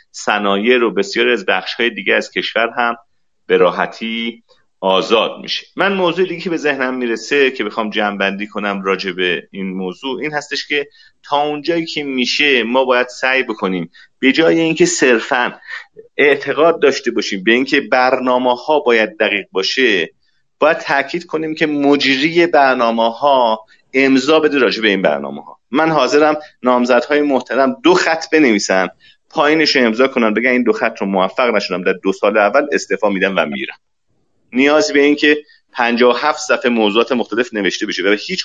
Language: Persian